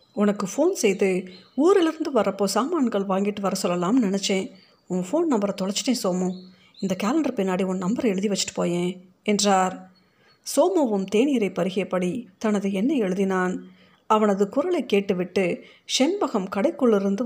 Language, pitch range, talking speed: Tamil, 190-235 Hz, 120 wpm